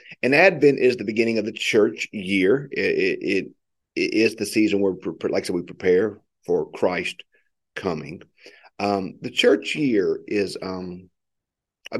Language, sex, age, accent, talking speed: English, male, 50-69, American, 155 wpm